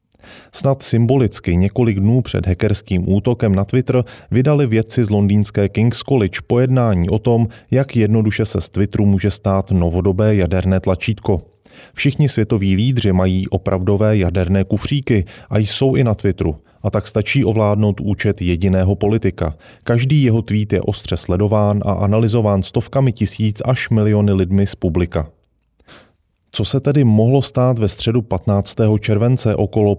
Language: Czech